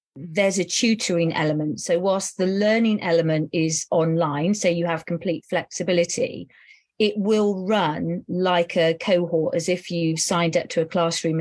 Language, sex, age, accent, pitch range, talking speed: English, female, 40-59, British, 170-205 Hz, 160 wpm